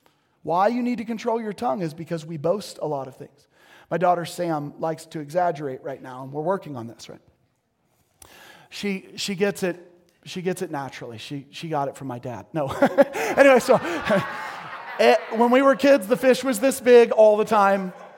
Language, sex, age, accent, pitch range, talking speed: English, male, 30-49, American, 180-245 Hz, 200 wpm